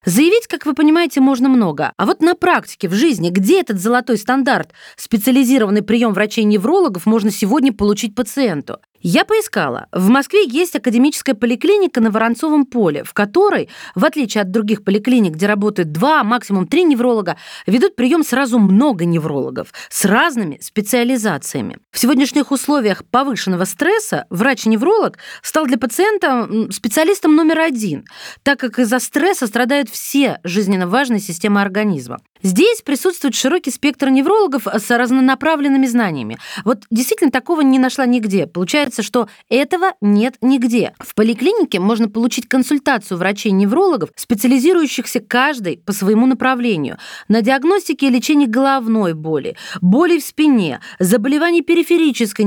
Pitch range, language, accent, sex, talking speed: 215-295 Hz, Russian, native, female, 135 wpm